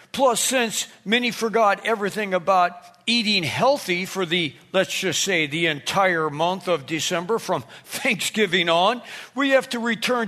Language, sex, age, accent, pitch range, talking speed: English, male, 50-69, American, 180-225 Hz, 145 wpm